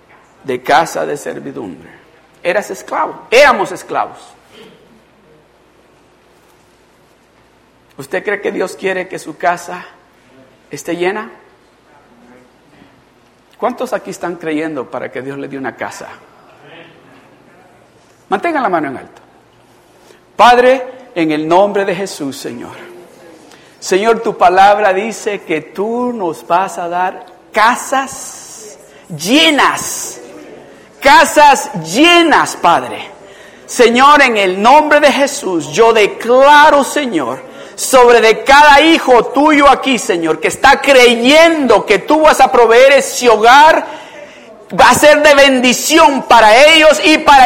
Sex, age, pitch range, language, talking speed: male, 50-69, 195-295 Hz, Spanish, 115 wpm